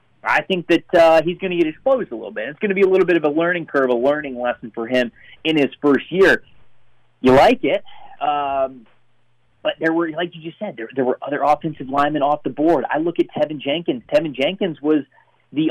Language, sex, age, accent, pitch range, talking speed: English, male, 30-49, American, 130-175 Hz, 235 wpm